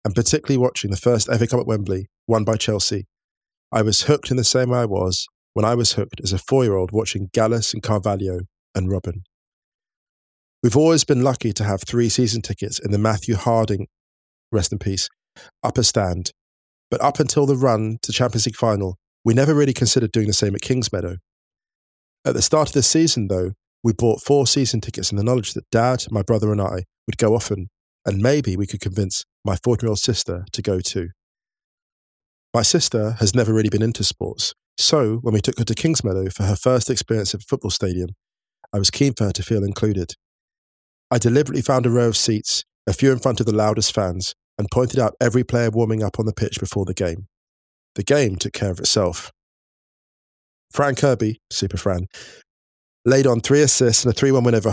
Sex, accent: male, British